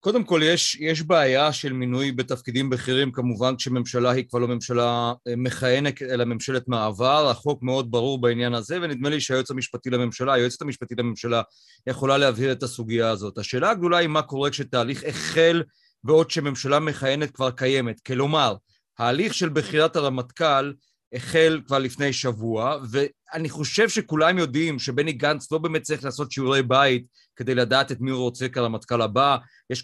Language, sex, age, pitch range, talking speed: Hebrew, male, 40-59, 125-145 Hz, 160 wpm